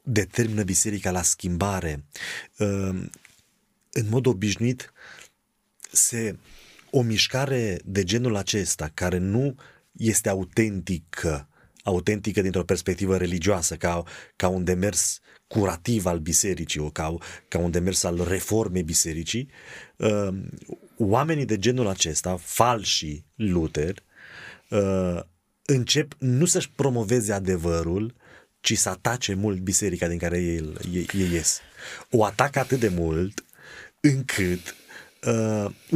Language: Romanian